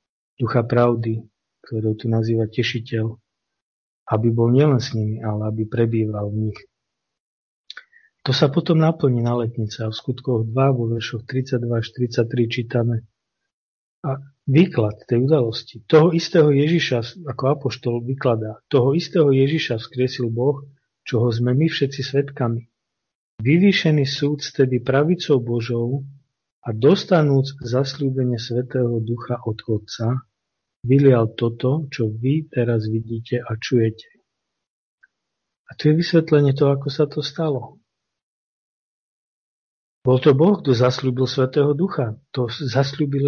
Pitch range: 115-140 Hz